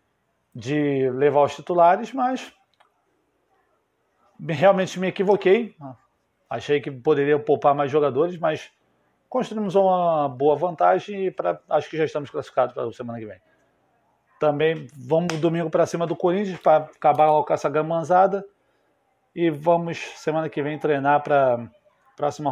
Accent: Brazilian